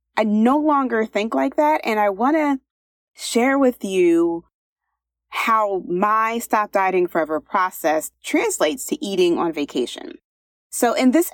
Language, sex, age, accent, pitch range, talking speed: English, female, 30-49, American, 180-270 Hz, 145 wpm